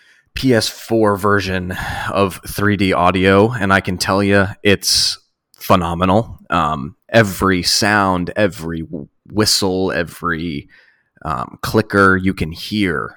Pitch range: 90-105 Hz